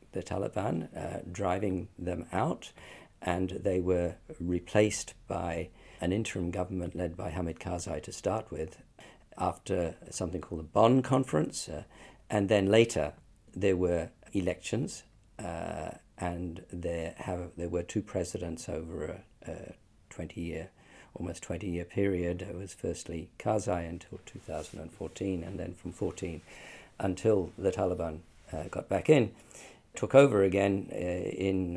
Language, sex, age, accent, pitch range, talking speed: English, male, 50-69, British, 85-100 Hz, 130 wpm